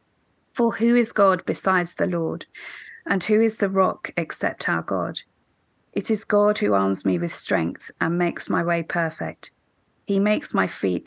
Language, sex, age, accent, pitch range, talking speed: English, female, 40-59, British, 160-195 Hz, 175 wpm